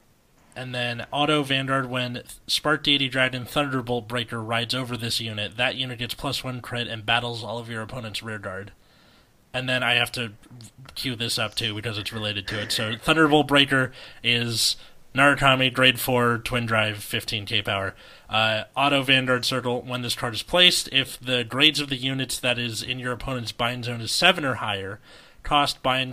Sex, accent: male, American